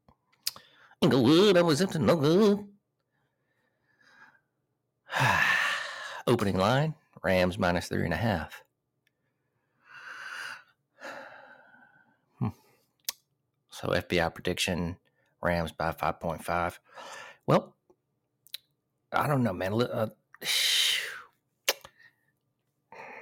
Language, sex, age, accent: English, male, 50-69, American